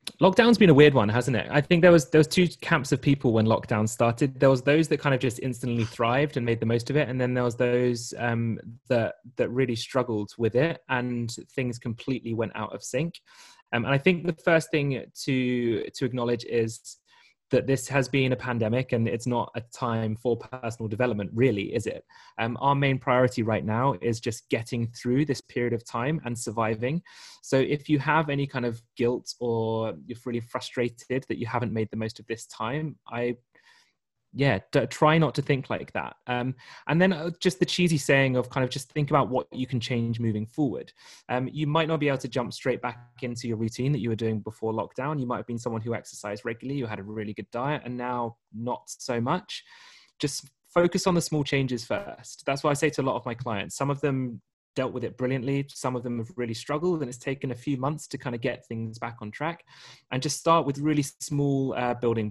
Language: English